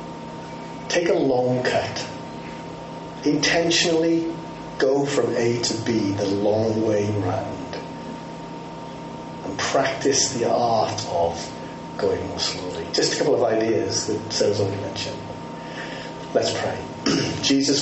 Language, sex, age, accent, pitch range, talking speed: English, male, 40-59, British, 85-125 Hz, 115 wpm